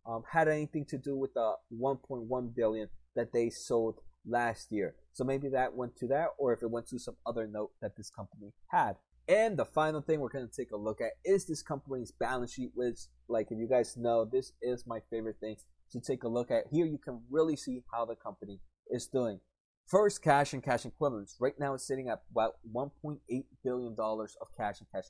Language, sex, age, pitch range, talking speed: English, male, 20-39, 115-140 Hz, 220 wpm